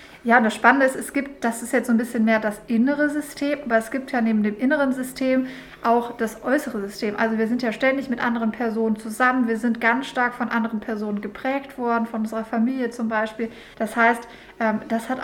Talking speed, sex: 215 wpm, female